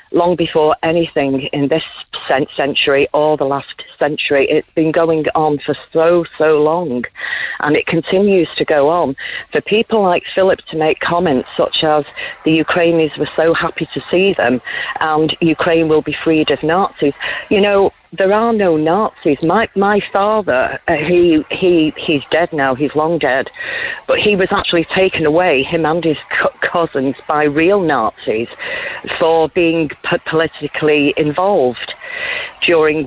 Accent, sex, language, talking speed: British, female, English, 155 wpm